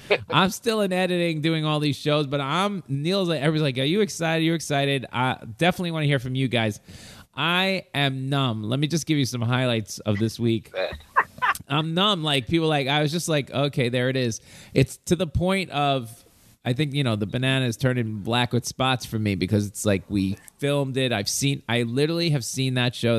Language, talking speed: English, 210 wpm